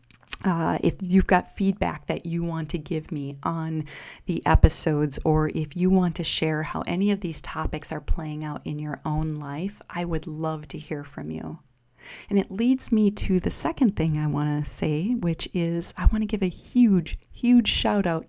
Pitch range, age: 155-180 Hz, 40-59